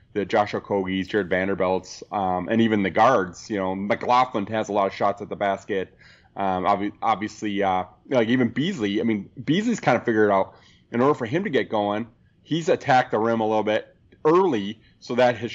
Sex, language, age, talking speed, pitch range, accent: male, English, 30-49, 200 wpm, 95-115 Hz, American